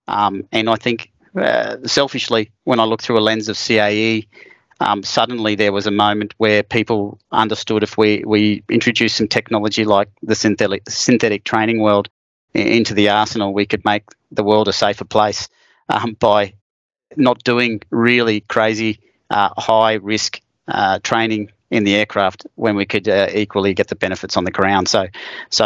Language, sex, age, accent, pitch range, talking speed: English, male, 30-49, Australian, 105-115 Hz, 170 wpm